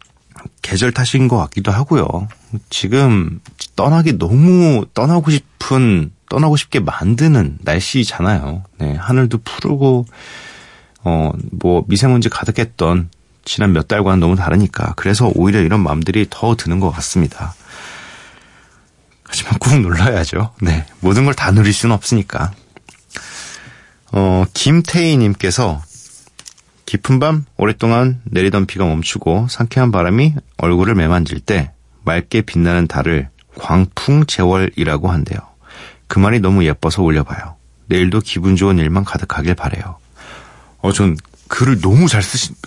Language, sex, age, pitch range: Korean, male, 40-59, 85-125 Hz